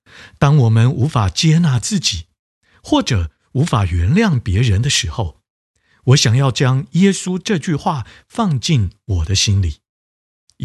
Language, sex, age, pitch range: Chinese, male, 50-69, 95-145 Hz